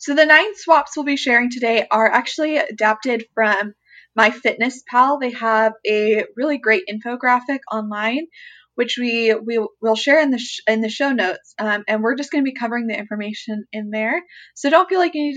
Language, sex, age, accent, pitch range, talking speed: English, female, 20-39, American, 215-270 Hz, 195 wpm